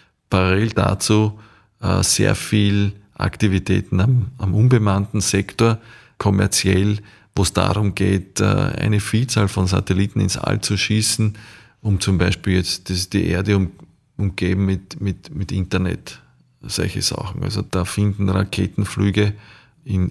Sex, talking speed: male, 115 wpm